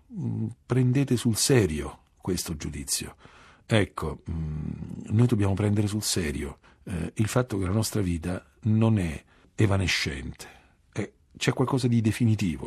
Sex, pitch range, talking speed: male, 85-110 Hz, 125 wpm